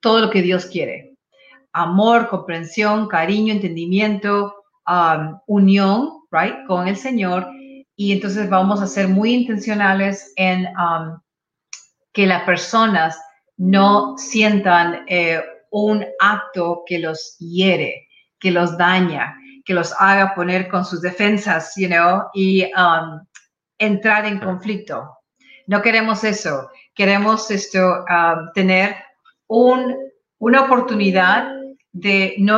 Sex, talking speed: female, 120 wpm